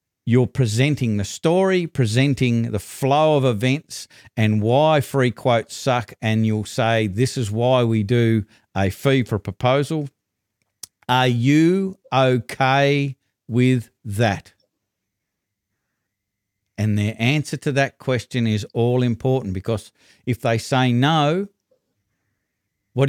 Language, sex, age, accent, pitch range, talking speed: English, male, 50-69, Australian, 110-135 Hz, 120 wpm